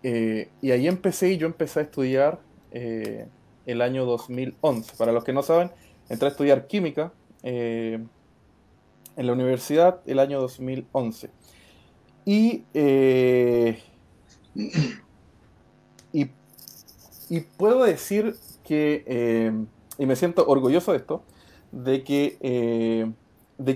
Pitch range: 120-160 Hz